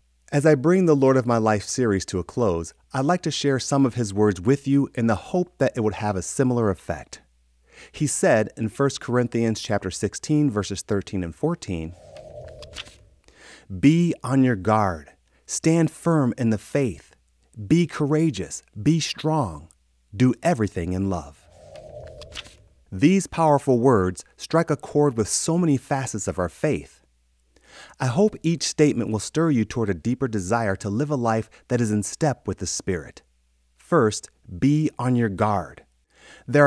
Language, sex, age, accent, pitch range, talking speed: English, male, 30-49, American, 95-145 Hz, 165 wpm